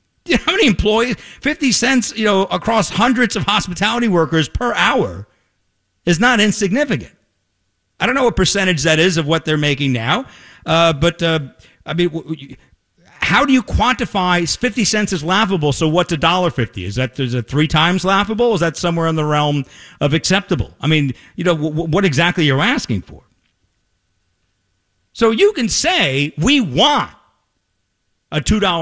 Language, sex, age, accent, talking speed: English, male, 50-69, American, 170 wpm